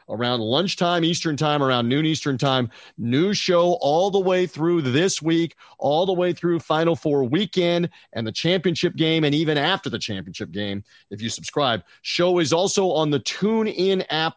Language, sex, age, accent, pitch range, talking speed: English, male, 40-59, American, 130-170 Hz, 185 wpm